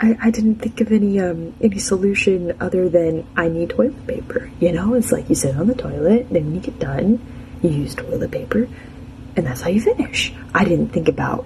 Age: 20-39